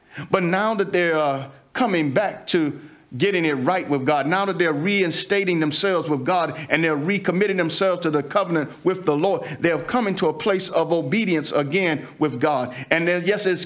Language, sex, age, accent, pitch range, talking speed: English, male, 50-69, American, 155-195 Hz, 185 wpm